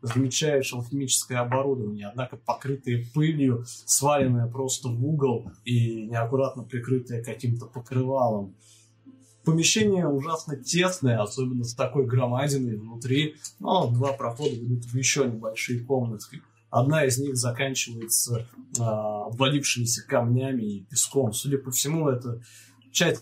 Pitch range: 115-135 Hz